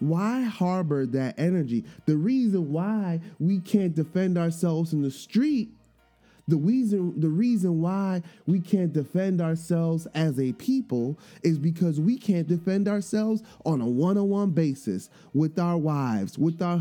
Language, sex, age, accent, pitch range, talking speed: English, male, 20-39, American, 155-200 Hz, 145 wpm